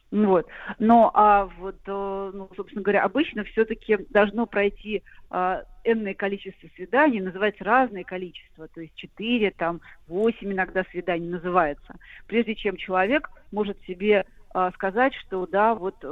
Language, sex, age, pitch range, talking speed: Russian, female, 40-59, 185-225 Hz, 135 wpm